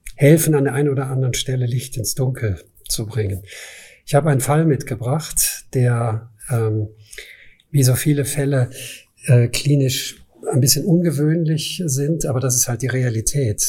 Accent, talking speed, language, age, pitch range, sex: German, 155 wpm, German, 50-69, 120-140 Hz, male